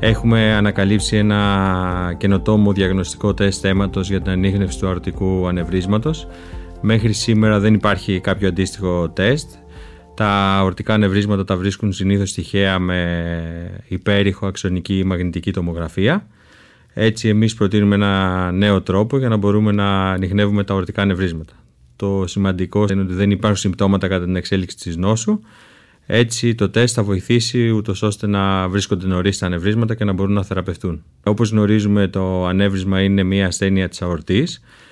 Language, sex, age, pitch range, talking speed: Greek, male, 30-49, 95-105 Hz, 145 wpm